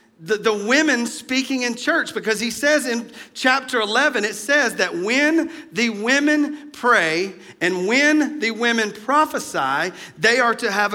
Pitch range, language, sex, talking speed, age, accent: 210-285 Hz, English, male, 155 wpm, 40-59, American